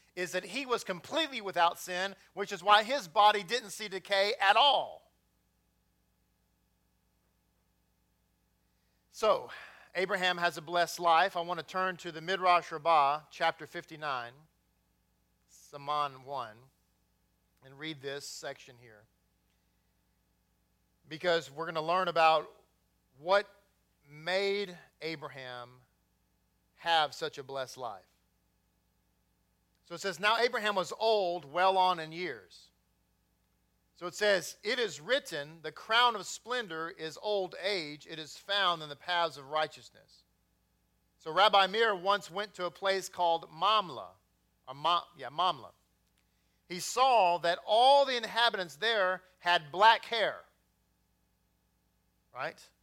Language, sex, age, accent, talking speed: English, male, 40-59, American, 125 wpm